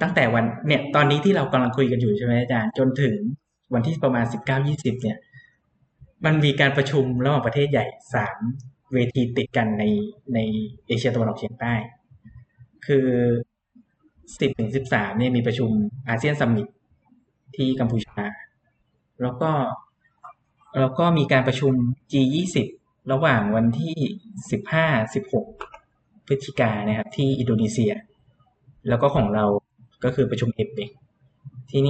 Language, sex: Thai, male